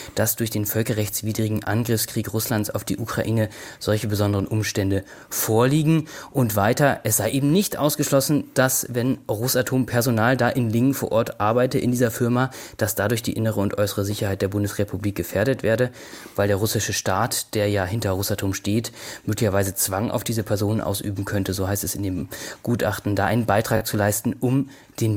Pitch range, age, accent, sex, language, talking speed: 100-120 Hz, 20-39, German, male, German, 175 wpm